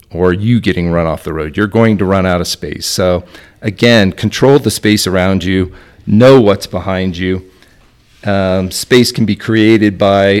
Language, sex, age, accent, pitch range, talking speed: English, male, 40-59, American, 95-110 Hz, 180 wpm